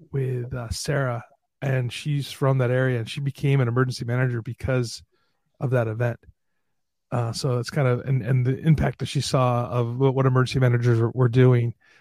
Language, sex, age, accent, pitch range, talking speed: English, male, 30-49, American, 120-135 Hz, 190 wpm